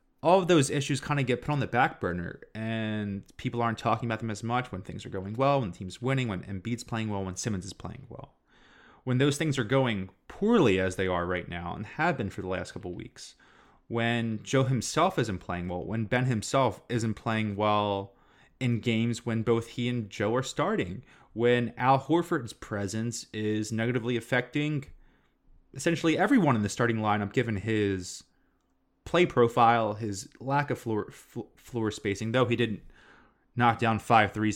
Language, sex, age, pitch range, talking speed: English, male, 20-39, 100-125 Hz, 190 wpm